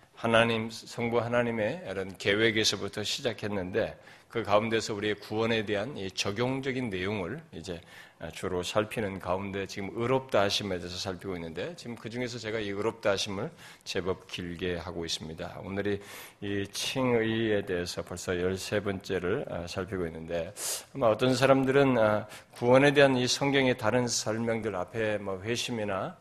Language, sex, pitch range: Korean, male, 95-115 Hz